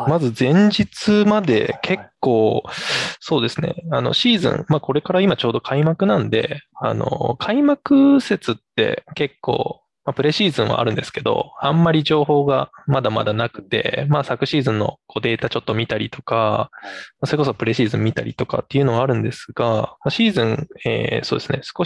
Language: Japanese